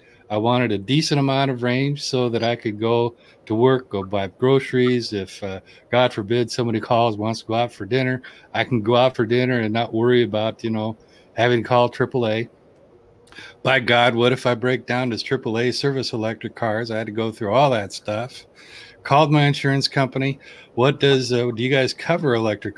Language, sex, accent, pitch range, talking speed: English, male, American, 110-130 Hz, 205 wpm